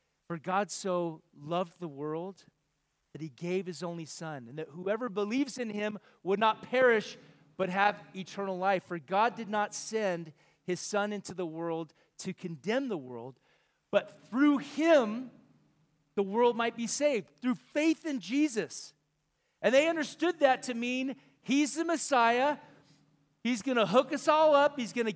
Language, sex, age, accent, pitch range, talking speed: English, male, 40-59, American, 160-230 Hz, 160 wpm